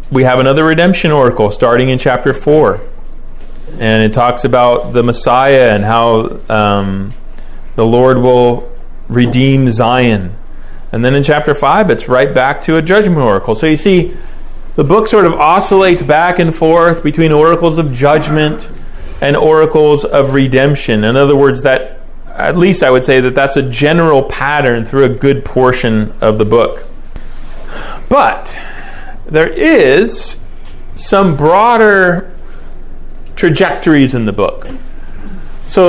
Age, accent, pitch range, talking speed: 30-49, American, 120-160 Hz, 140 wpm